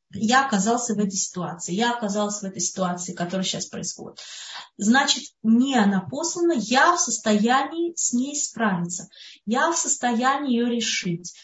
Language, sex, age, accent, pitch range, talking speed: Russian, female, 20-39, native, 195-255 Hz, 145 wpm